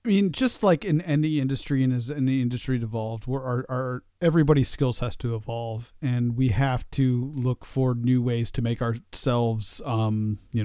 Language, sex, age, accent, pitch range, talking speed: English, male, 40-59, American, 120-140 Hz, 190 wpm